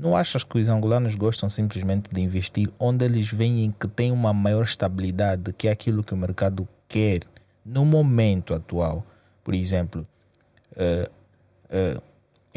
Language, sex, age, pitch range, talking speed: Portuguese, male, 20-39, 95-115 Hz, 150 wpm